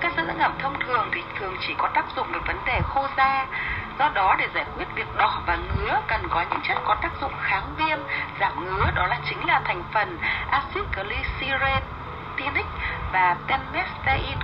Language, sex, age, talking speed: Vietnamese, female, 20-39, 195 wpm